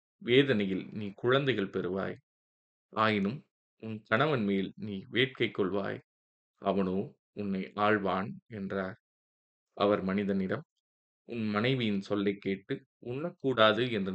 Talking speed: 100 wpm